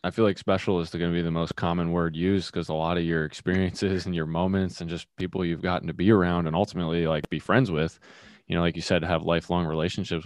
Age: 20-39